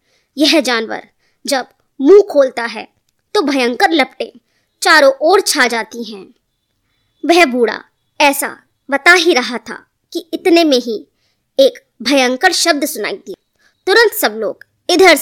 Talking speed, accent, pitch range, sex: 135 wpm, native, 255-370 Hz, male